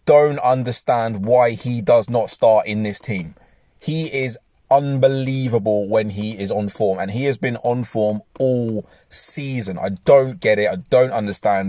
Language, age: English, 20-39